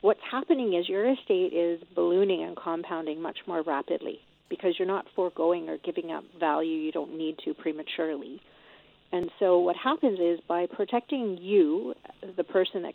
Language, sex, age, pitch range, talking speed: English, female, 40-59, 170-235 Hz, 165 wpm